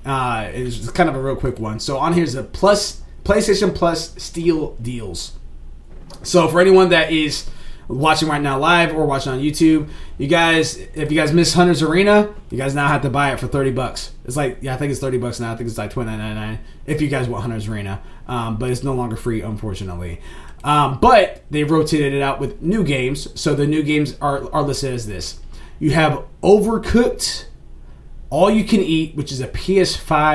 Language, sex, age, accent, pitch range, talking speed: English, male, 20-39, American, 120-160 Hz, 210 wpm